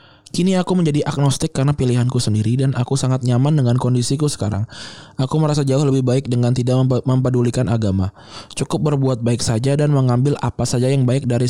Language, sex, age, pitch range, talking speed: Indonesian, male, 20-39, 120-140 Hz, 185 wpm